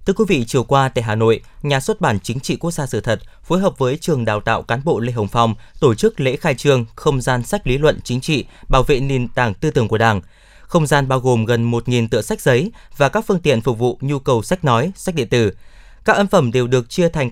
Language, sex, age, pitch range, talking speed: Vietnamese, male, 20-39, 115-160 Hz, 265 wpm